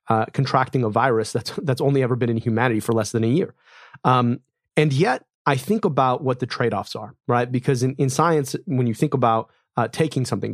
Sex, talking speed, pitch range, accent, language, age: male, 215 wpm, 115-140 Hz, American, English, 30-49